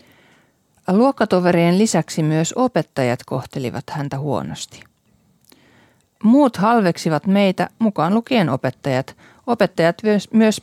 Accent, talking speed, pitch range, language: native, 85 wpm, 145-200 Hz, Finnish